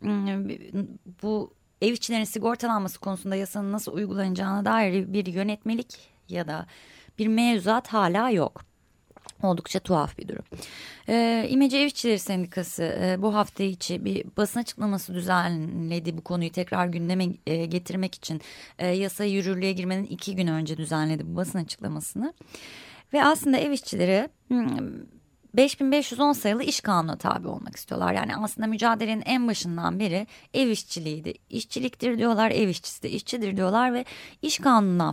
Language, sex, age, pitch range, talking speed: Turkish, female, 30-49, 180-235 Hz, 135 wpm